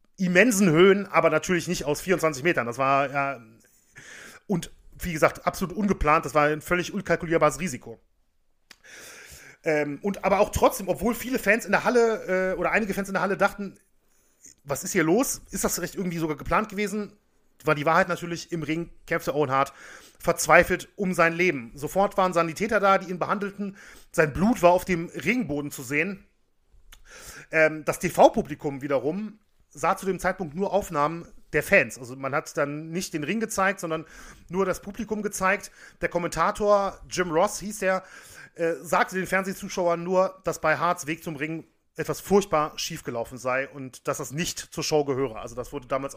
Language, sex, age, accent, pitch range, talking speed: German, male, 40-59, German, 155-195 Hz, 180 wpm